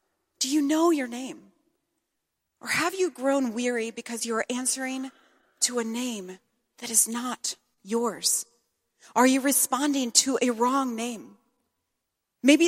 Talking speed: 135 wpm